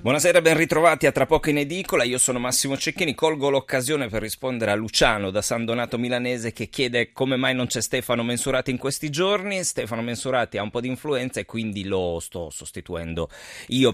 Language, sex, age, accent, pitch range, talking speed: Italian, male, 30-49, native, 90-120 Hz, 200 wpm